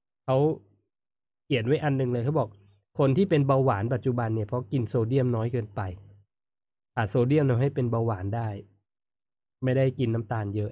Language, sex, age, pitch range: Thai, male, 20-39, 105-135 Hz